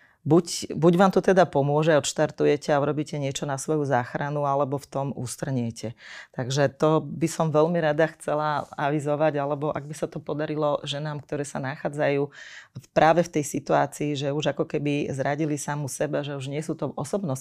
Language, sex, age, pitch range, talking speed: Slovak, female, 30-49, 140-155 Hz, 185 wpm